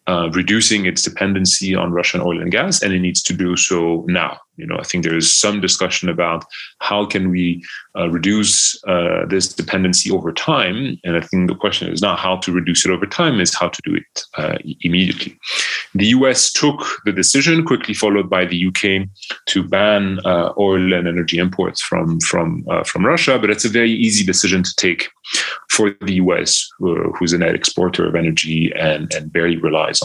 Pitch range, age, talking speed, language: 85-100 Hz, 30-49, 200 wpm, English